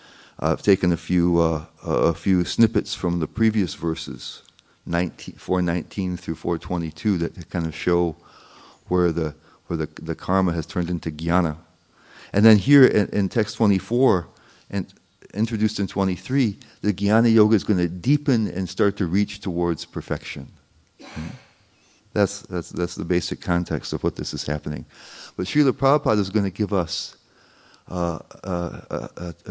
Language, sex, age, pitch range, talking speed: English, male, 40-59, 85-110 Hz, 155 wpm